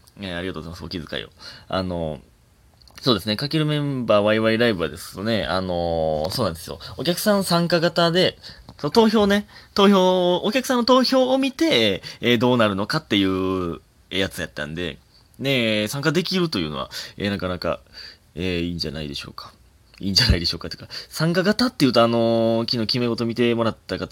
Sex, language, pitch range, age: male, Japanese, 90-125 Hz, 20-39